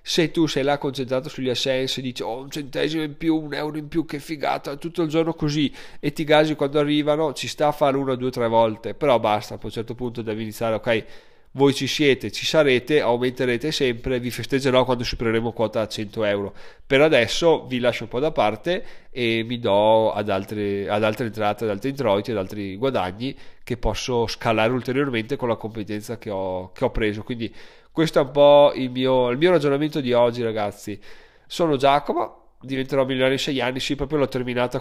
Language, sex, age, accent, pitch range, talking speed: Italian, male, 30-49, native, 115-140 Hz, 200 wpm